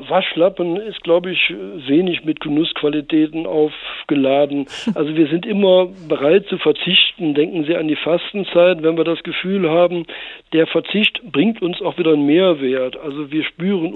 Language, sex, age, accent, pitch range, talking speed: German, male, 60-79, German, 155-180 Hz, 155 wpm